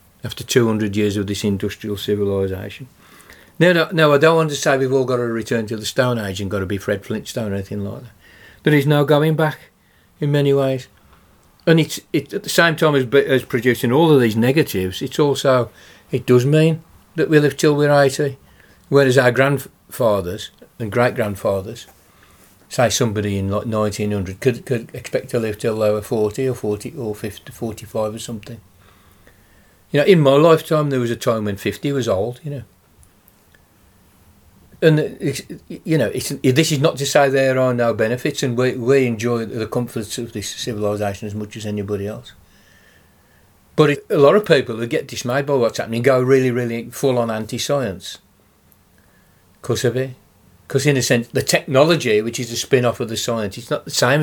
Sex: male